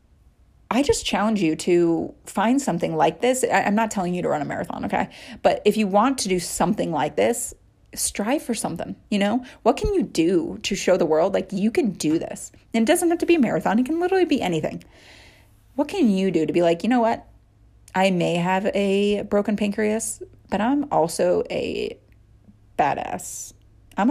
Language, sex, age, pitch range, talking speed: English, female, 30-49, 160-235 Hz, 200 wpm